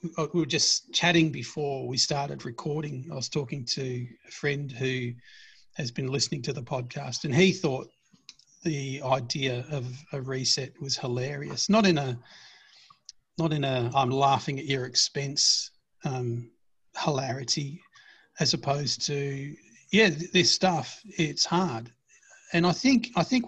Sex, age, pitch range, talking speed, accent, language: male, 40-59, 130-165 Hz, 145 wpm, Australian, English